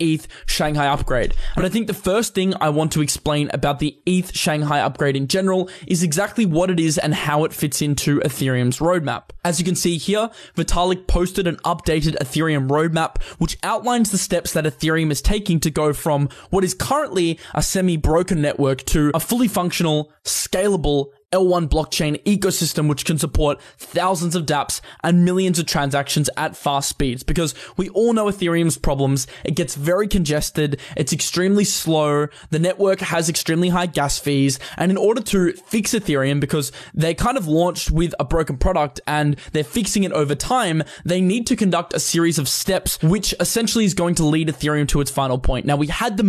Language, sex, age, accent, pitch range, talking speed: English, male, 20-39, Australian, 150-185 Hz, 190 wpm